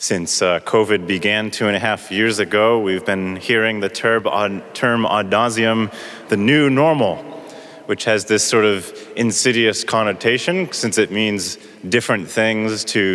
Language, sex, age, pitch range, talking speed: English, male, 30-49, 105-125 Hz, 150 wpm